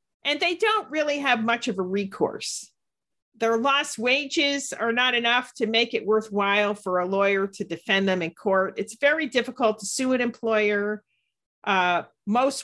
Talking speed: 170 wpm